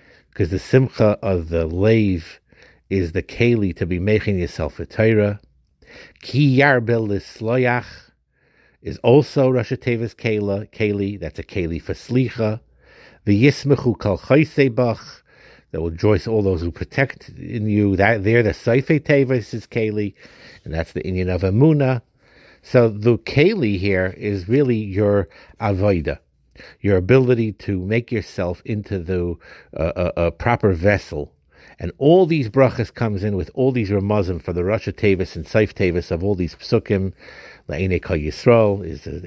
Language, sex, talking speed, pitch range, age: English, male, 150 wpm, 90-120 Hz, 60-79